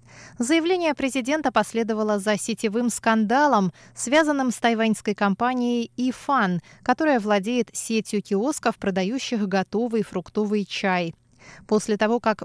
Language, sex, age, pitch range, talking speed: Russian, female, 20-39, 195-260 Hz, 105 wpm